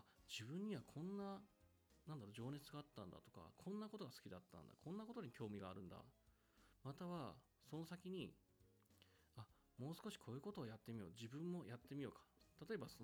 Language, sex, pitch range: Japanese, male, 105-175 Hz